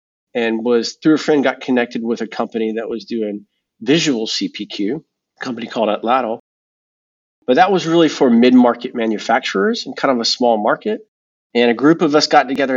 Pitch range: 115-155 Hz